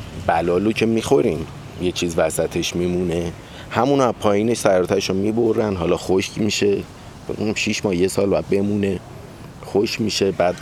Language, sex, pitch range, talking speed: Persian, male, 90-115 Hz, 140 wpm